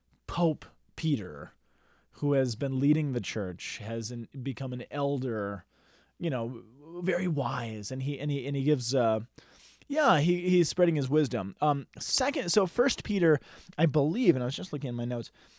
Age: 20-39